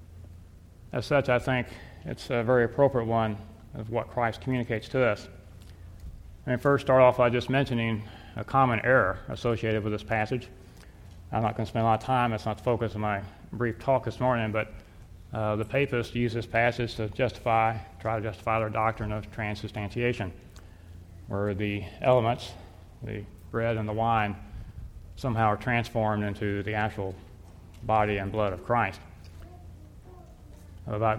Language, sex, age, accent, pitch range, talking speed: English, male, 30-49, American, 100-115 Hz, 165 wpm